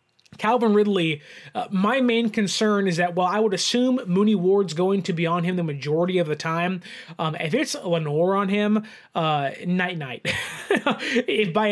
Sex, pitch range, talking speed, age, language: male, 170-220 Hz, 170 wpm, 20-39, English